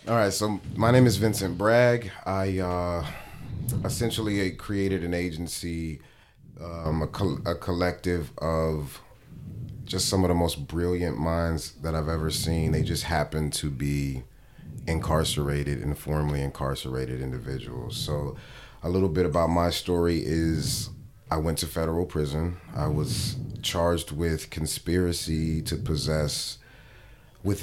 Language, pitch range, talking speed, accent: English, 75-90 Hz, 135 wpm, American